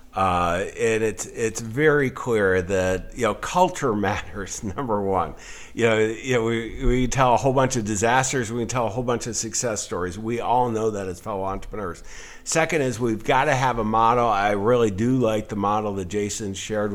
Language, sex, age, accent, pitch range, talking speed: English, male, 50-69, American, 100-125 Hz, 200 wpm